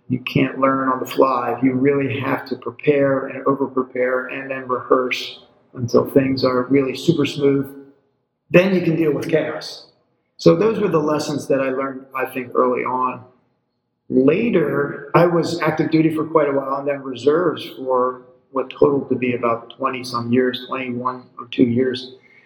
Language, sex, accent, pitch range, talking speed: English, male, American, 130-155 Hz, 170 wpm